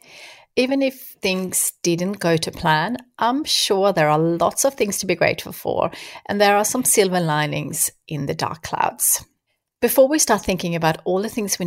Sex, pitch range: female, 165-220 Hz